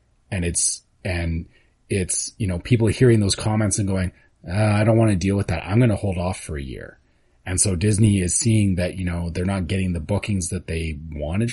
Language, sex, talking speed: English, male, 235 wpm